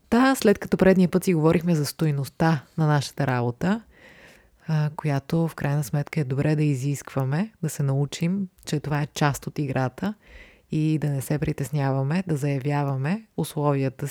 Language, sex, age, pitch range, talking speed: Bulgarian, female, 20-39, 140-170 Hz, 155 wpm